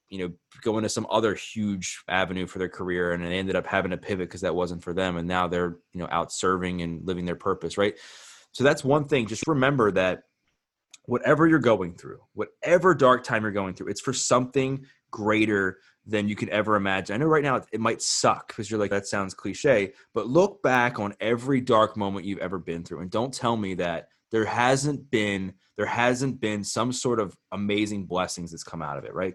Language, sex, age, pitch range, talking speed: English, male, 20-39, 95-120 Hz, 220 wpm